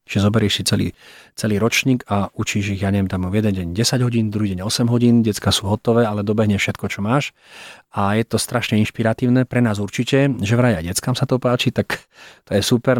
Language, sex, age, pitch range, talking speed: Slovak, male, 30-49, 100-120 Hz, 215 wpm